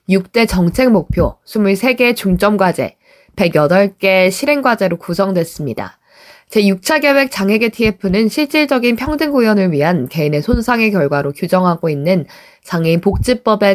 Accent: native